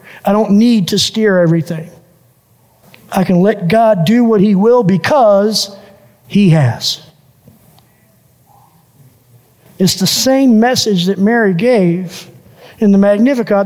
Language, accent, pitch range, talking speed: English, American, 175-240 Hz, 120 wpm